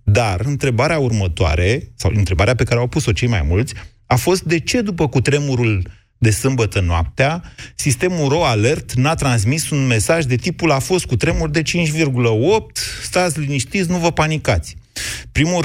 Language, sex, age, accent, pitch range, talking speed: Romanian, male, 30-49, native, 105-135 Hz, 160 wpm